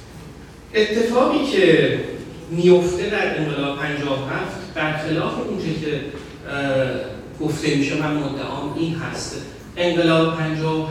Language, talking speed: Persian, 105 wpm